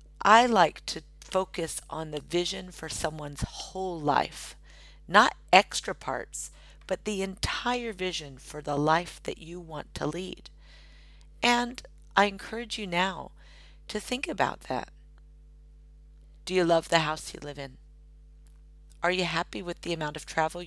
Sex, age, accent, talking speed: female, 50-69, American, 150 wpm